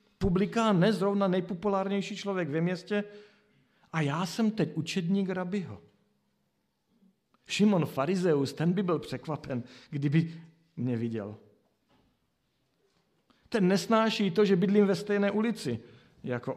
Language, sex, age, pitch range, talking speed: Slovak, male, 50-69, 130-180 Hz, 110 wpm